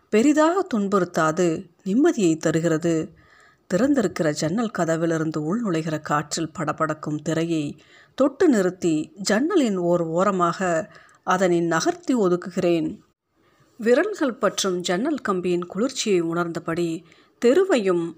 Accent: native